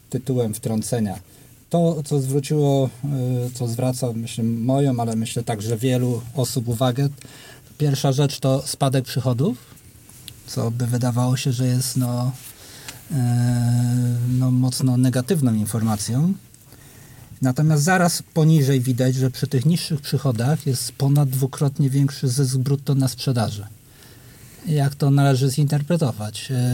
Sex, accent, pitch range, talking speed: male, native, 120-145 Hz, 115 wpm